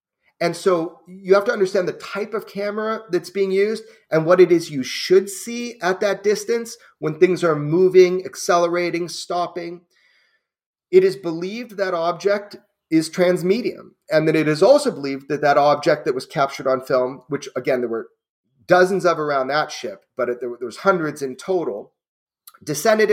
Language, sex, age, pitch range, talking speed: English, male, 30-49, 150-200 Hz, 170 wpm